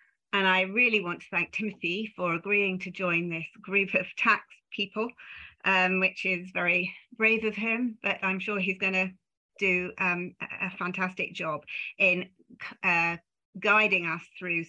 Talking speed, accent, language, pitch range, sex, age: 155 wpm, British, English, 170-200 Hz, female, 40-59